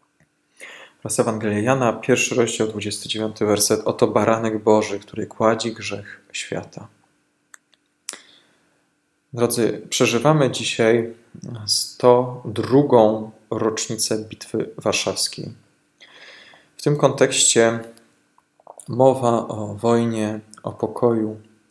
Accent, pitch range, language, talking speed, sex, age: native, 110-120 Hz, Polish, 80 wpm, male, 20-39